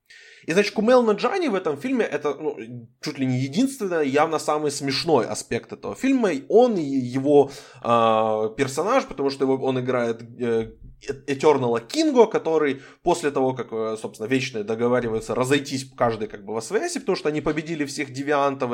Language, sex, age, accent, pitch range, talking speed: Ukrainian, male, 20-39, native, 125-195 Hz, 160 wpm